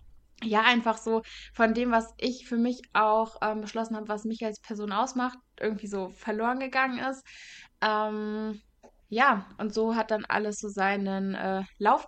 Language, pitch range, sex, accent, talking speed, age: German, 200-220 Hz, female, German, 170 wpm, 20-39